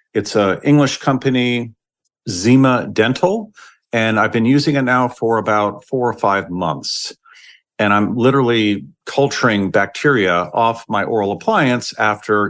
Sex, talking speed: male, 135 wpm